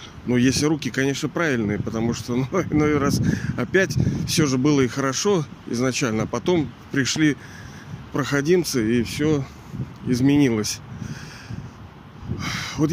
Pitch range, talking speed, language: 120-155 Hz, 115 wpm, Russian